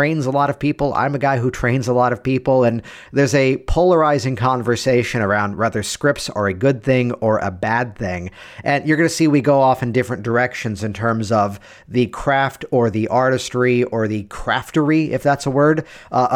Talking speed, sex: 210 wpm, male